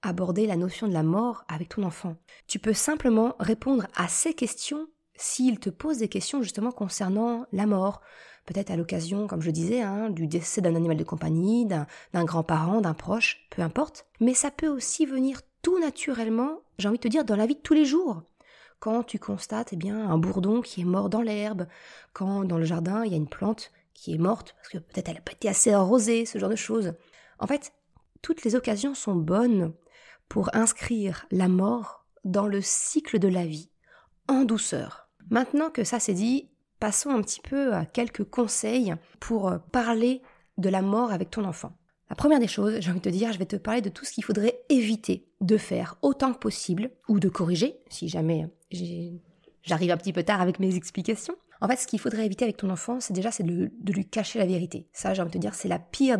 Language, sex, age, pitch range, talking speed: French, female, 20-39, 185-240 Hz, 220 wpm